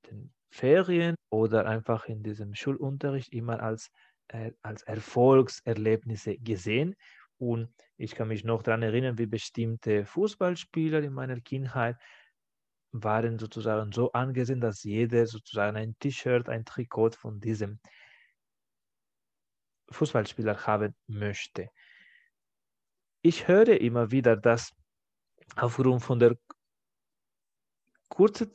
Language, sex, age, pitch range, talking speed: German, male, 30-49, 110-140 Hz, 105 wpm